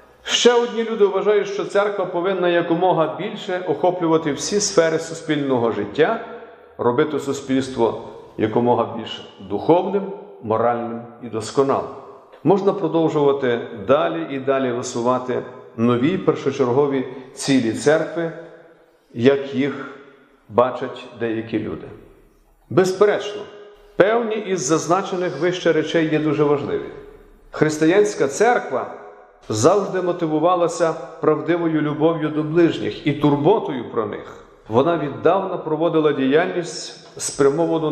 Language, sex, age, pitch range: Ukrainian, male, 50-69, 140-180 Hz